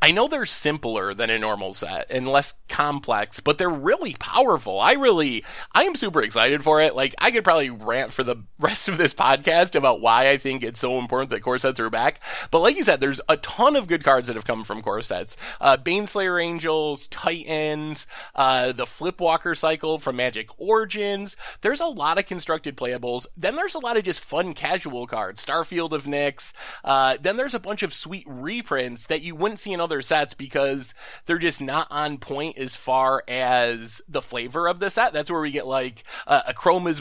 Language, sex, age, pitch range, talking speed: English, male, 20-39, 130-175 Hz, 210 wpm